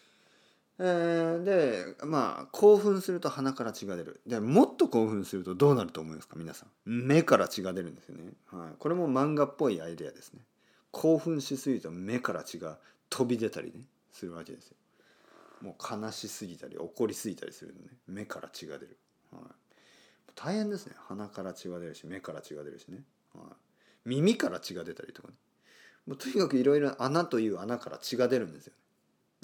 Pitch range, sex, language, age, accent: 95-140 Hz, male, Japanese, 40-59, native